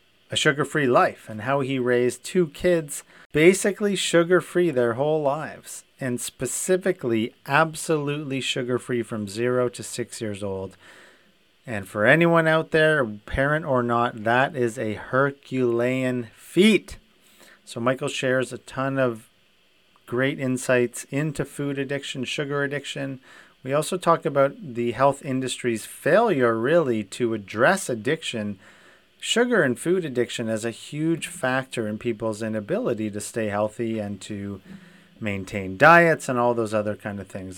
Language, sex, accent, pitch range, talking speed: English, male, American, 115-150 Hz, 145 wpm